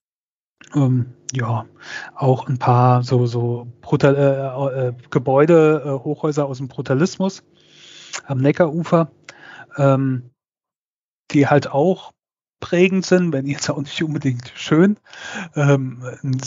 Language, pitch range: German, 135-165 Hz